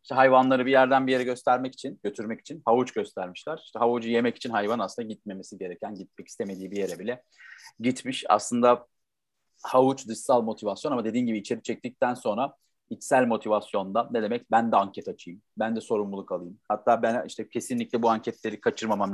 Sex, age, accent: male, 40-59, native